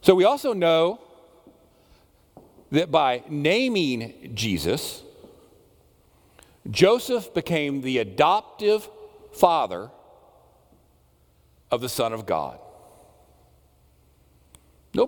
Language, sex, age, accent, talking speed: English, male, 50-69, American, 75 wpm